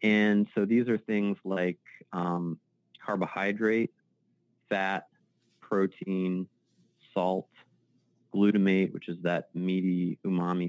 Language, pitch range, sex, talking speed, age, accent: English, 90-110 Hz, male, 95 wpm, 30-49, American